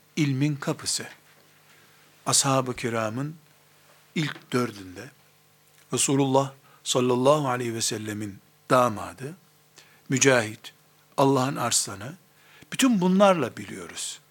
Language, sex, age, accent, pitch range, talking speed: Turkish, male, 60-79, native, 130-175 Hz, 80 wpm